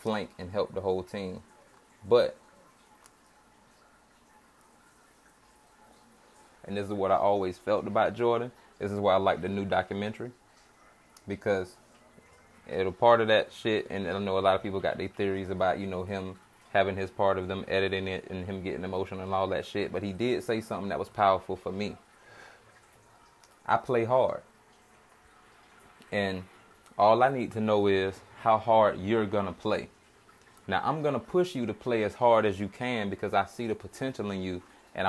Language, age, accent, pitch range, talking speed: English, 20-39, American, 95-110 Hz, 180 wpm